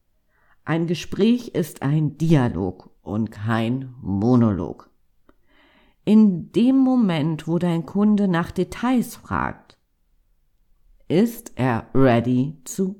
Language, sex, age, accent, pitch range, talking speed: German, female, 50-69, German, 130-195 Hz, 95 wpm